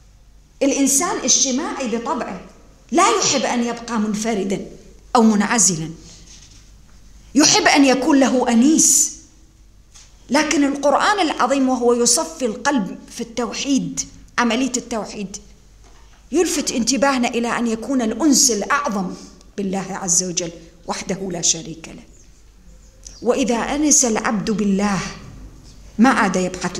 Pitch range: 200-285 Hz